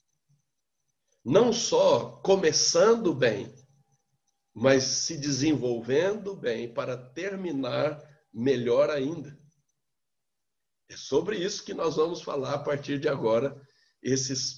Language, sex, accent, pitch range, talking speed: Portuguese, male, Brazilian, 130-180 Hz, 100 wpm